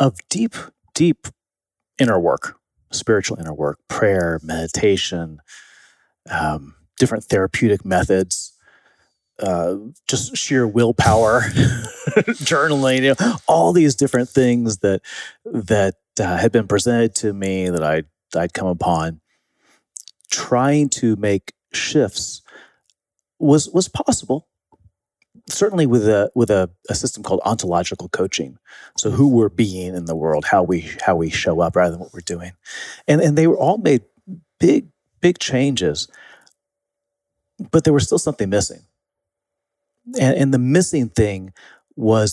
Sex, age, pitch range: male, 30-49, 90-135 Hz